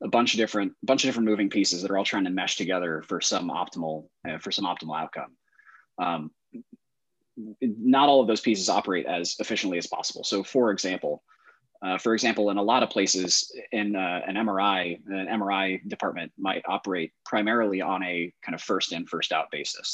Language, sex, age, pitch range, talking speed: English, male, 20-39, 90-110 Hz, 190 wpm